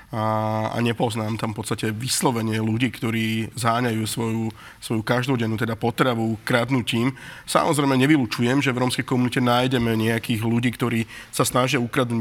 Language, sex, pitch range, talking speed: Slovak, male, 115-135 Hz, 140 wpm